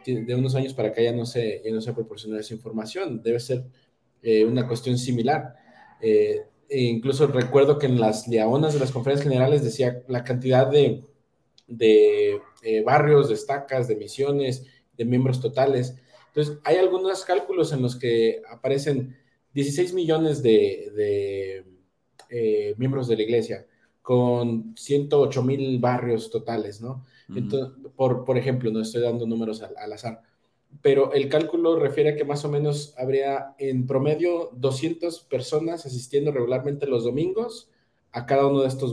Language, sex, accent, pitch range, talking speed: Spanish, male, Mexican, 120-145 Hz, 155 wpm